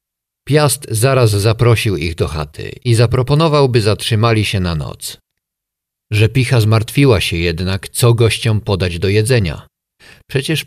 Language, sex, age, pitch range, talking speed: Polish, male, 50-69, 100-130 Hz, 135 wpm